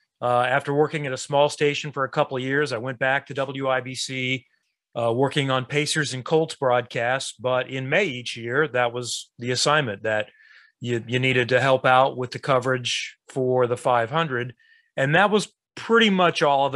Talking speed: 190 wpm